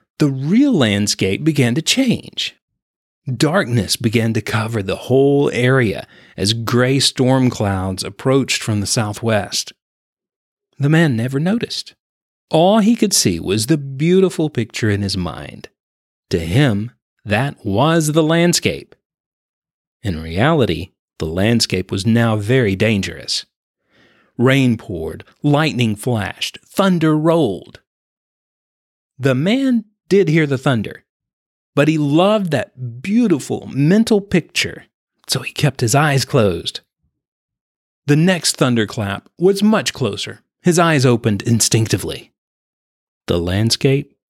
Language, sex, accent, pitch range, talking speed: English, male, American, 105-160 Hz, 120 wpm